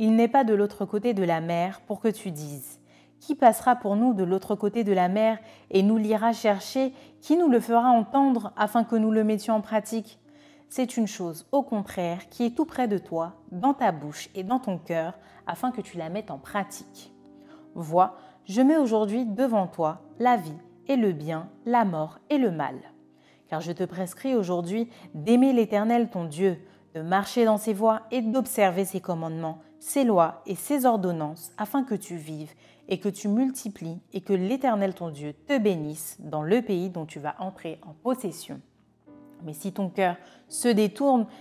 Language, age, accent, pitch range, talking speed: French, 30-49, French, 175-235 Hz, 195 wpm